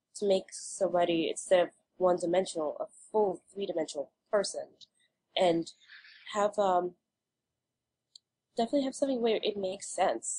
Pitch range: 155-200 Hz